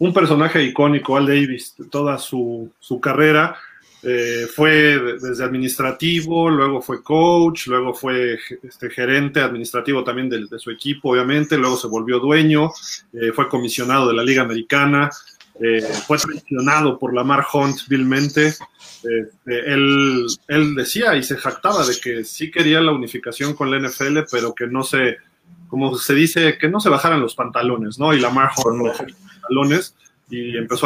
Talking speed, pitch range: 160 wpm, 125-150 Hz